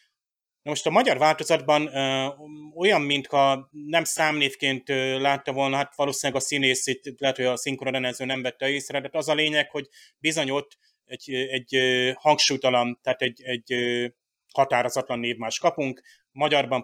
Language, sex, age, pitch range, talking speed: Hungarian, male, 30-49, 125-150 Hz, 140 wpm